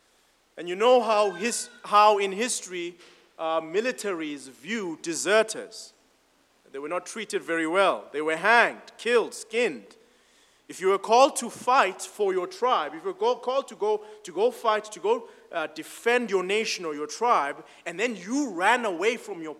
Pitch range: 175-250 Hz